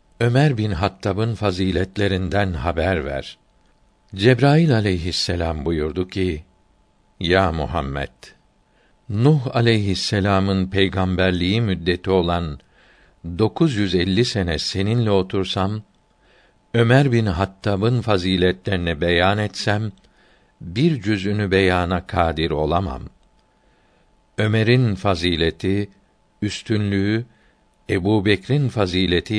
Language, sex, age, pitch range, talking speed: Turkish, male, 60-79, 90-110 Hz, 80 wpm